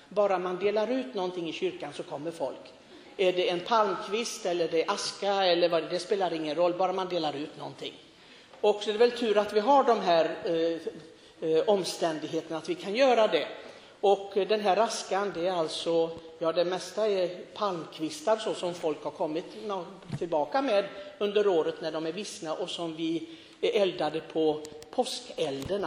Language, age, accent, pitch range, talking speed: Swedish, 60-79, native, 165-215 Hz, 190 wpm